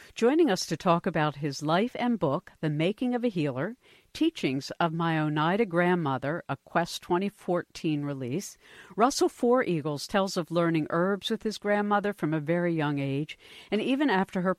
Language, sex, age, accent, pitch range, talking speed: English, female, 60-79, American, 155-195 Hz, 175 wpm